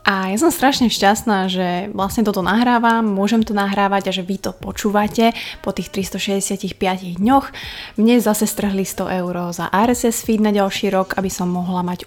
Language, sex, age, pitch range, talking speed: Slovak, female, 20-39, 190-220 Hz, 180 wpm